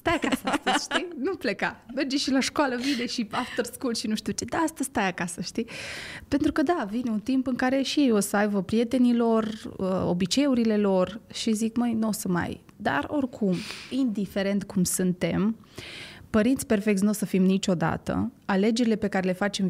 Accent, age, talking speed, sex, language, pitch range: native, 20-39, 195 wpm, female, Romanian, 195-245 Hz